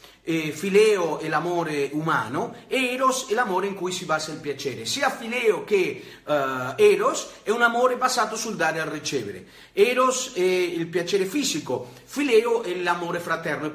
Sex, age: male, 40-59